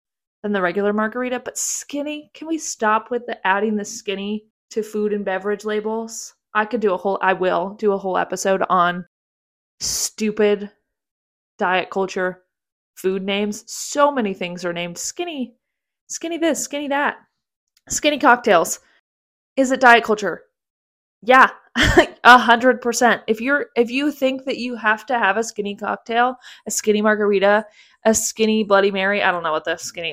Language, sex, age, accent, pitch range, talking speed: English, female, 20-39, American, 200-250 Hz, 165 wpm